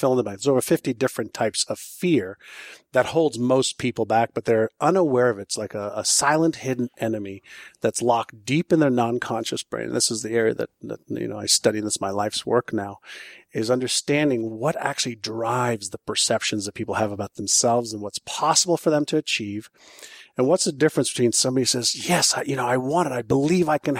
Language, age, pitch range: English, 40-59, 115-155 Hz